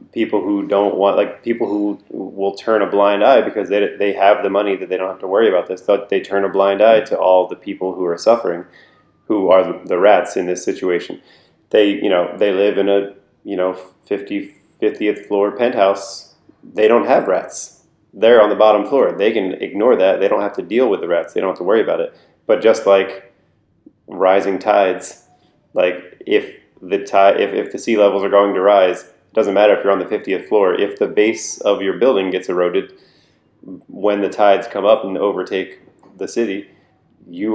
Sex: male